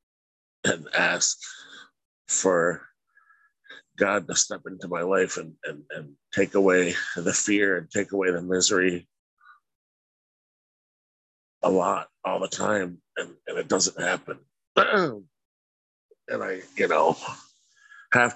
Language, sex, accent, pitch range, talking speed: English, male, American, 95-145 Hz, 120 wpm